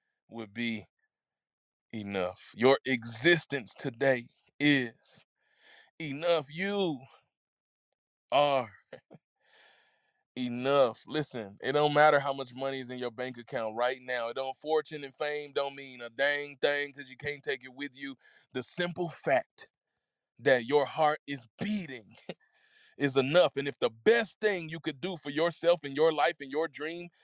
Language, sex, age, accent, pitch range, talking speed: English, male, 20-39, American, 135-185 Hz, 145 wpm